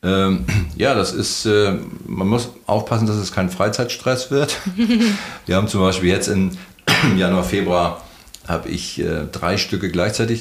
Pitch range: 80-95 Hz